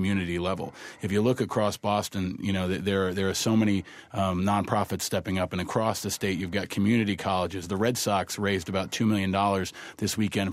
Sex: male